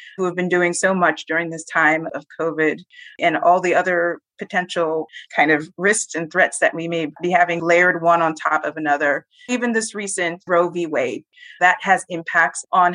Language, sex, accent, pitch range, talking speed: English, female, American, 170-205 Hz, 195 wpm